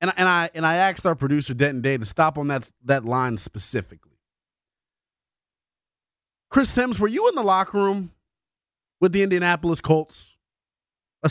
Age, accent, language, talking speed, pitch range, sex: 30-49, American, English, 165 wpm, 125-195 Hz, male